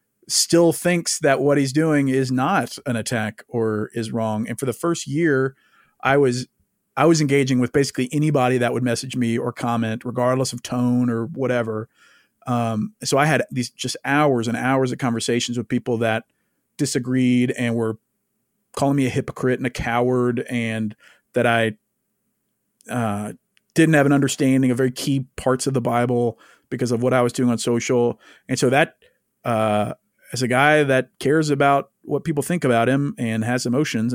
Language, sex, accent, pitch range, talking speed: English, male, American, 120-140 Hz, 180 wpm